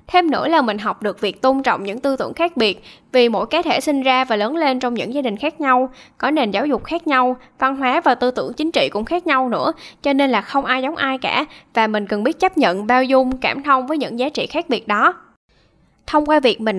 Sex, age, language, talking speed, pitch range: female, 10-29, Vietnamese, 270 wpm, 220-285 Hz